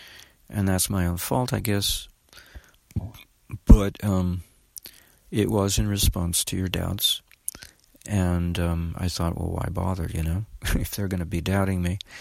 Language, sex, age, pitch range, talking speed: English, male, 50-69, 85-100 Hz, 155 wpm